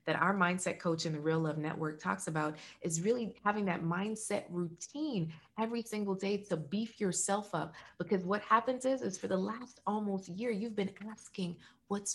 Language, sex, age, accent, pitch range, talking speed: English, female, 30-49, American, 175-225 Hz, 190 wpm